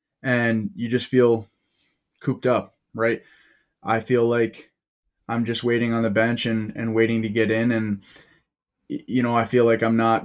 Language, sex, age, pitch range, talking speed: English, male, 20-39, 110-120 Hz, 175 wpm